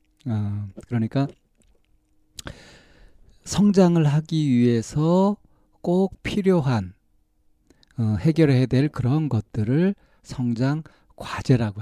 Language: Korean